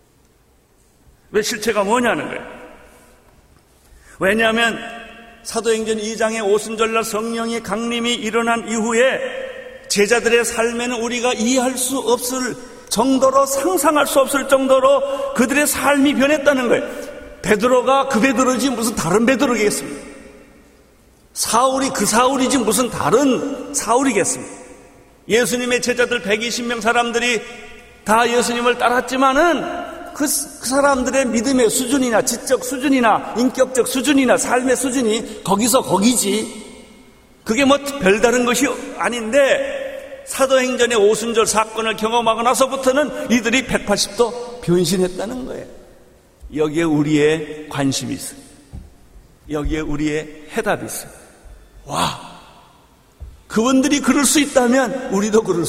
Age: 40-59